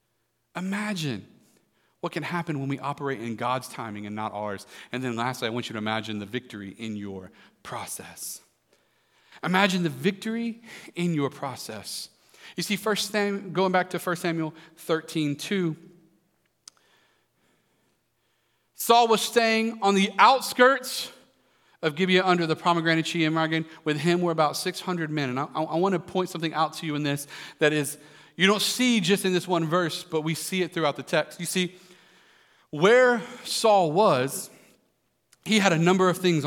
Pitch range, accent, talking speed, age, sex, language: 145-195 Hz, American, 170 wpm, 40-59, male, English